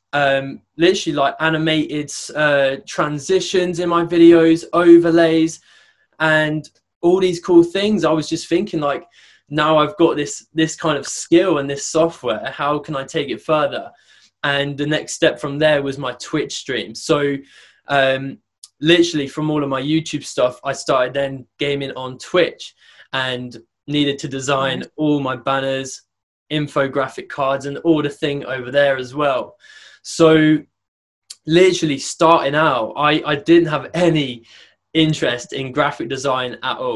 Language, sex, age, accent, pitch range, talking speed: English, male, 20-39, British, 135-160 Hz, 155 wpm